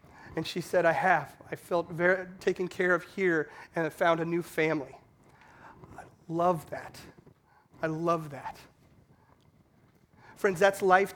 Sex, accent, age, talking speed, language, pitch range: male, American, 30-49, 145 wpm, English, 175-235 Hz